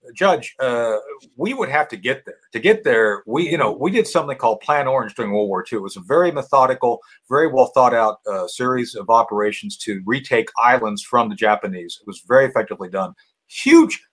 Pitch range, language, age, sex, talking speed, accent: 110-170 Hz, English, 50-69, male, 210 wpm, American